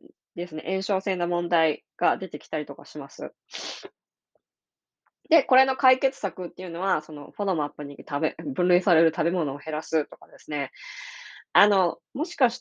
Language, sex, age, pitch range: Japanese, female, 20-39, 160-215 Hz